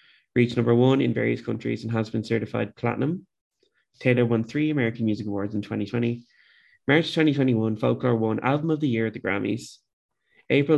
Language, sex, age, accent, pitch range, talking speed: English, male, 20-39, Irish, 110-130 Hz, 175 wpm